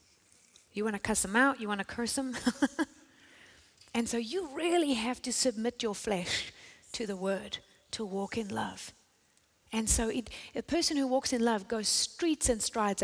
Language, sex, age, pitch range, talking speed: English, female, 30-49, 200-250 Hz, 185 wpm